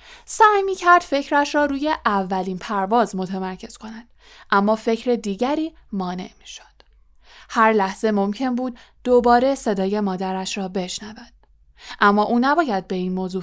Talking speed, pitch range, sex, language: 140 wpm, 190-240 Hz, female, Persian